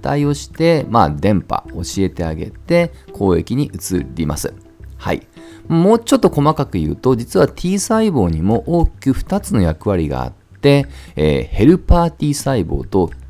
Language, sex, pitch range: Japanese, male, 90-145 Hz